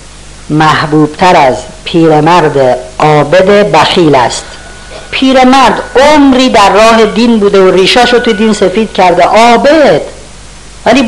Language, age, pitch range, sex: Persian, 50-69, 155-210 Hz, female